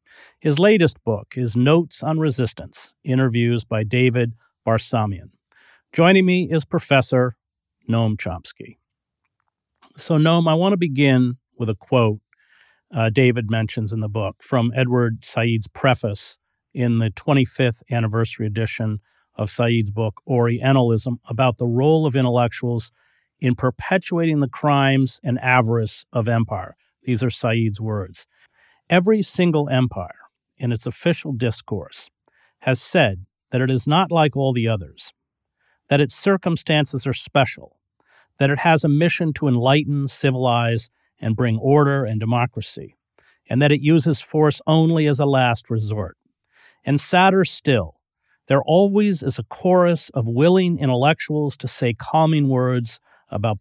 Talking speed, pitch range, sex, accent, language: 140 wpm, 115-150 Hz, male, American, English